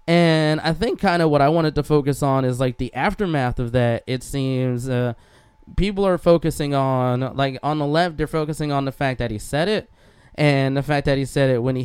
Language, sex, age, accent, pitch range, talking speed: English, male, 20-39, American, 125-150 Hz, 235 wpm